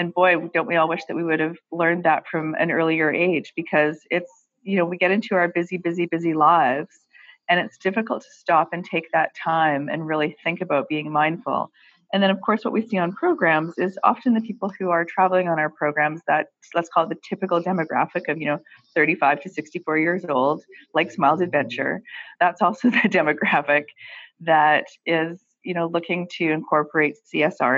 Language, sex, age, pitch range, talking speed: English, female, 30-49, 150-175 Hz, 200 wpm